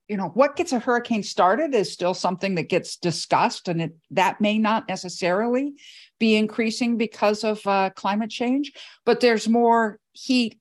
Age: 50-69